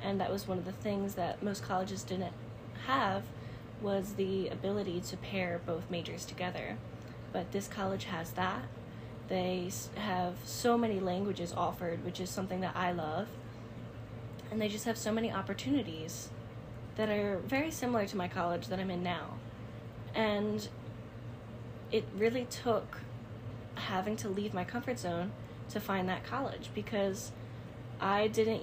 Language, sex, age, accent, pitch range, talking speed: English, female, 10-29, American, 115-195 Hz, 150 wpm